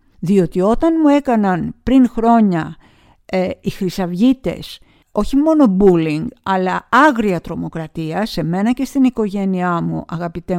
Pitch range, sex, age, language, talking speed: 185-270 Hz, female, 50-69, Greek, 125 wpm